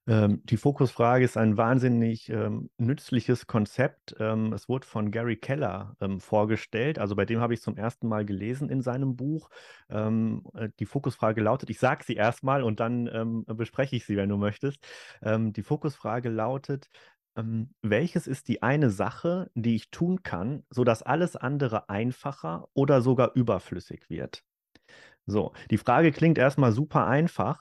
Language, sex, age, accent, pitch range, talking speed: German, male, 30-49, German, 110-140 Hz, 160 wpm